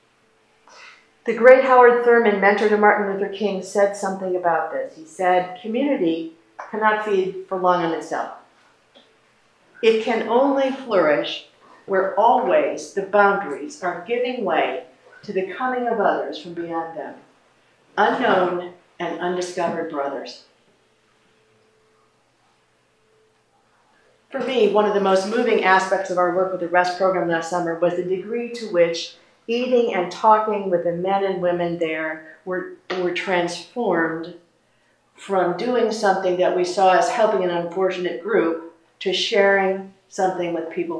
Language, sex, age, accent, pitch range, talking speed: English, female, 50-69, American, 175-215 Hz, 140 wpm